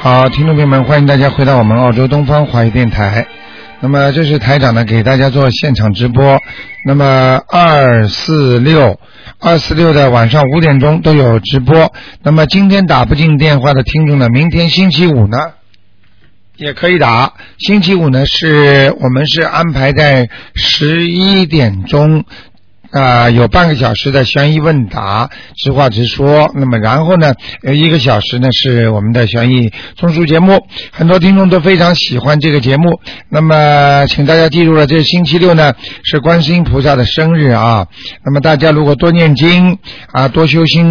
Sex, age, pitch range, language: male, 50-69, 130-160 Hz, Chinese